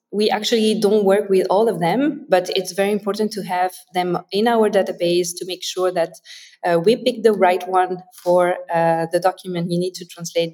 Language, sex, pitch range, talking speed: English, female, 175-205 Hz, 205 wpm